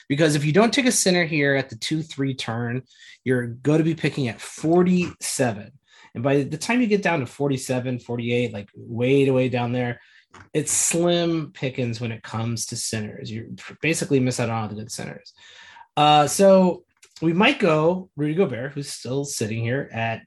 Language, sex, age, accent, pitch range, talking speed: English, male, 30-49, American, 125-175 Hz, 190 wpm